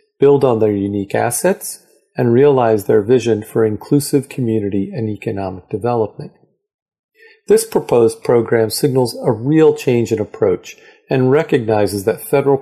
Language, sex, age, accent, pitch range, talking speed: English, male, 40-59, American, 110-165 Hz, 135 wpm